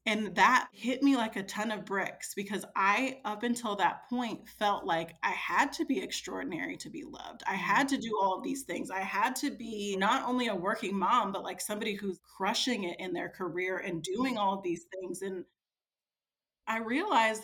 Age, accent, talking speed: 30-49, American, 205 wpm